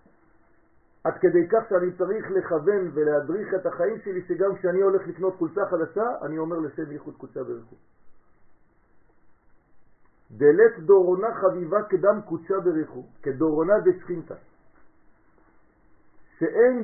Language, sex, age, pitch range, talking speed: French, male, 50-69, 150-200 Hz, 110 wpm